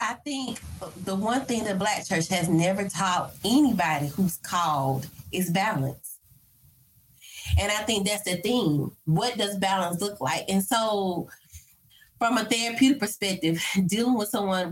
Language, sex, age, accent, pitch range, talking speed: English, female, 20-39, American, 170-220 Hz, 145 wpm